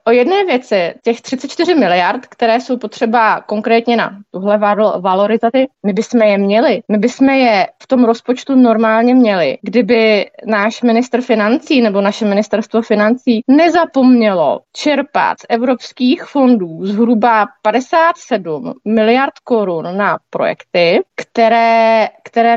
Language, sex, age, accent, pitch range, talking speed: Czech, female, 20-39, native, 220-335 Hz, 120 wpm